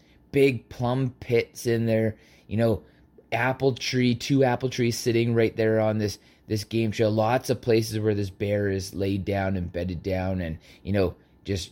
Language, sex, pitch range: English, male, 90-110 Hz